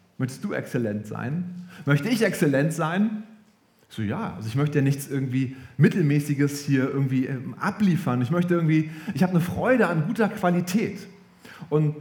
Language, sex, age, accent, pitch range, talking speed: German, male, 30-49, German, 140-195 Hz, 155 wpm